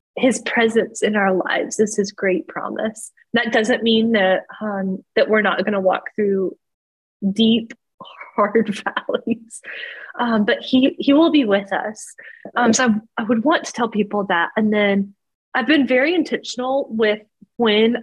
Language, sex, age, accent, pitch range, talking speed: English, female, 20-39, American, 195-245 Hz, 165 wpm